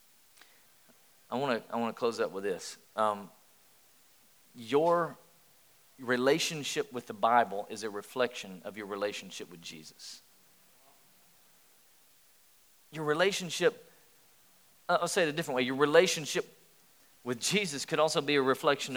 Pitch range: 130-190 Hz